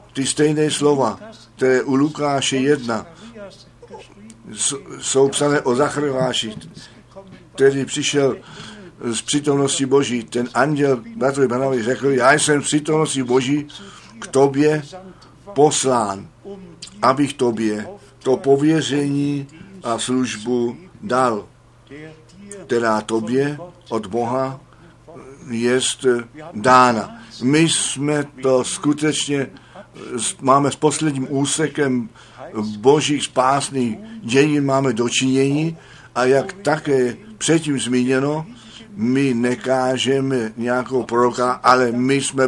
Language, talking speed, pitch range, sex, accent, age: Czech, 95 wpm, 125-150 Hz, male, native, 60-79